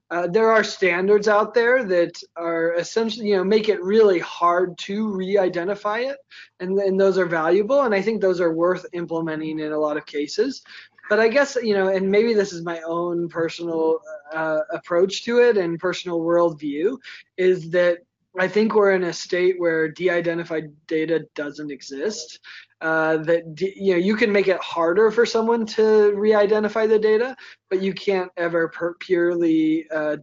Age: 20-39